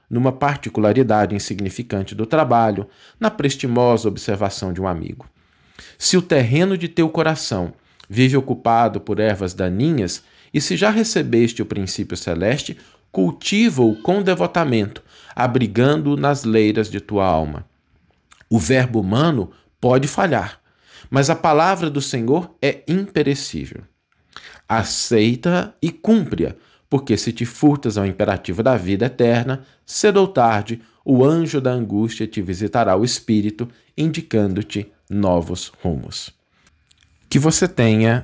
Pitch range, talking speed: 100-140 Hz, 125 wpm